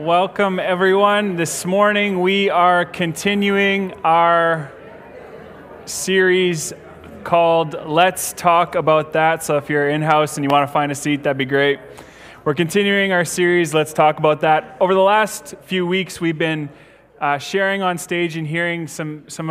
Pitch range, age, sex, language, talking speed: 145-175 Hz, 20-39, male, English, 155 wpm